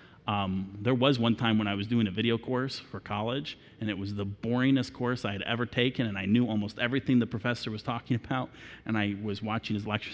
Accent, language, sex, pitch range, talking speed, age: American, English, male, 115-170 Hz, 235 wpm, 30-49